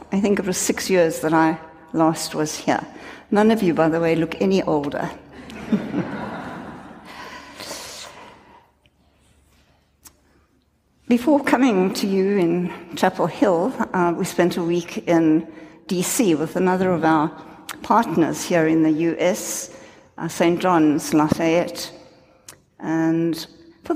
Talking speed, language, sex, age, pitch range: 125 wpm, English, female, 60-79, 165-205 Hz